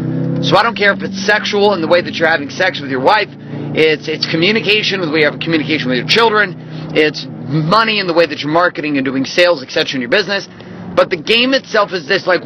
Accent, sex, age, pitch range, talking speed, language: American, male, 30-49, 160-200 Hz, 245 wpm, English